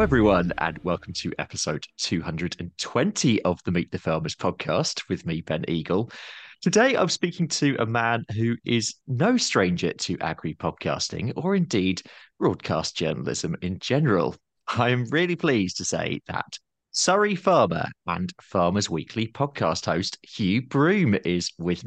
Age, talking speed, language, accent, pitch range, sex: 30-49, 145 wpm, English, British, 90-140 Hz, male